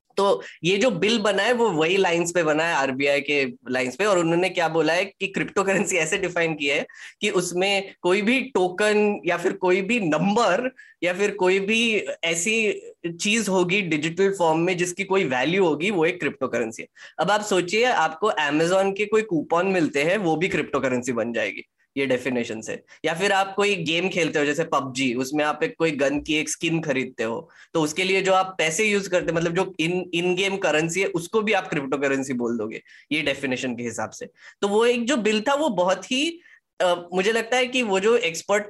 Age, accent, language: 10-29, native, Hindi